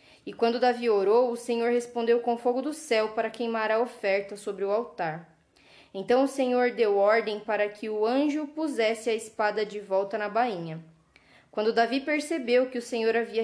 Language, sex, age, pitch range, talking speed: Portuguese, female, 10-29, 200-245 Hz, 185 wpm